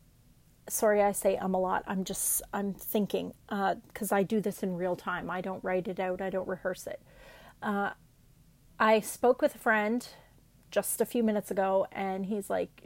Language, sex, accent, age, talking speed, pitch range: English, female, American, 30-49, 190 wpm, 195-240 Hz